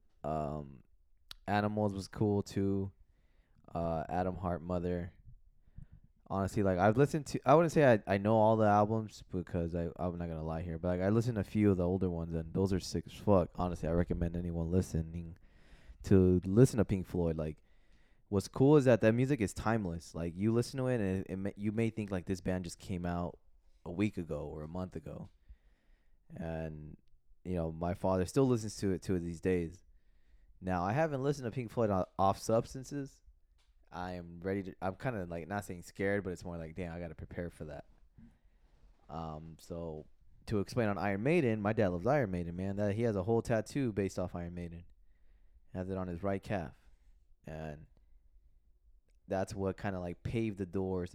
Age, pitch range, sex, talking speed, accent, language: 20-39, 80-100 Hz, male, 200 wpm, American, English